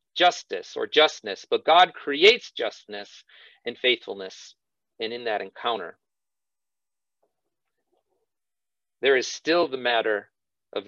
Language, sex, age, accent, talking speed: English, male, 40-59, American, 105 wpm